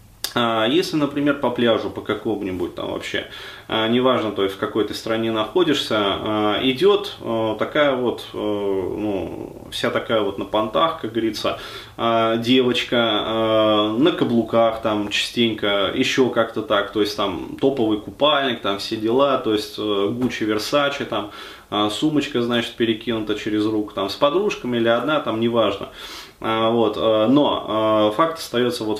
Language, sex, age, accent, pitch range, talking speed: Russian, male, 20-39, native, 110-125 Hz, 140 wpm